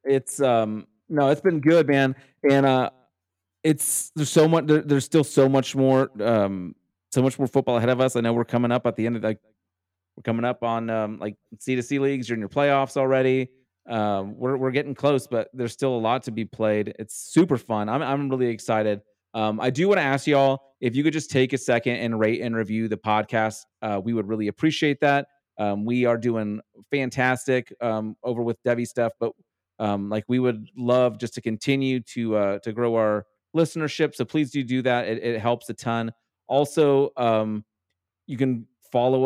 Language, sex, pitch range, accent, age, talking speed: English, male, 110-135 Hz, American, 30-49, 210 wpm